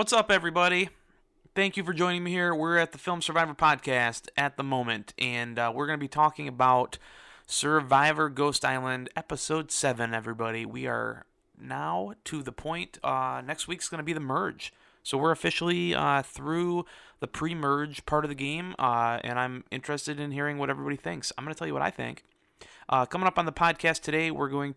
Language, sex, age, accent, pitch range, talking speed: English, male, 30-49, American, 115-155 Hz, 200 wpm